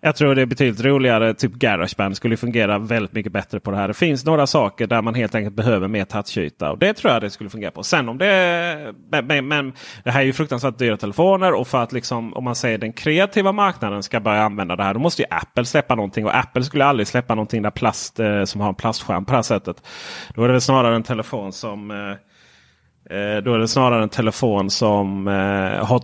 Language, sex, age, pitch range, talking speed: Swedish, male, 30-49, 110-140 Hz, 230 wpm